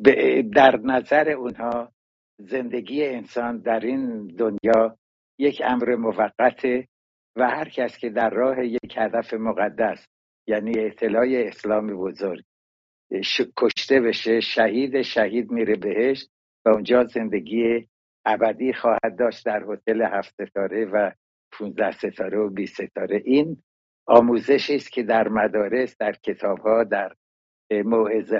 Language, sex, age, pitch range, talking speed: English, male, 60-79, 110-125 Hz, 120 wpm